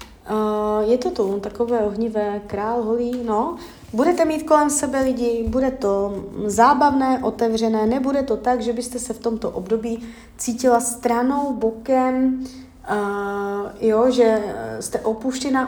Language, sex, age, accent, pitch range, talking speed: Czech, female, 30-49, native, 205-255 Hz, 135 wpm